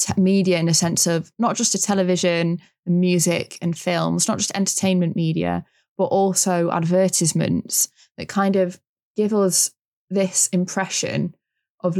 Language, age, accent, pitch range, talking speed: English, 20-39, British, 165-190 Hz, 140 wpm